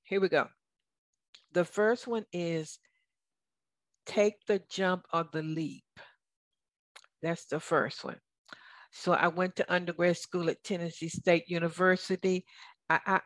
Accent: American